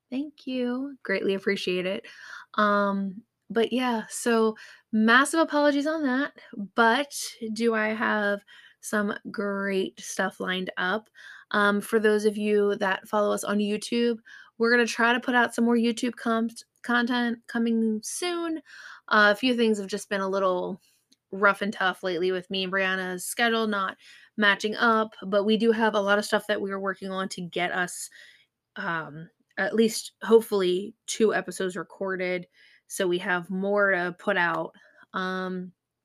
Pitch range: 195-235 Hz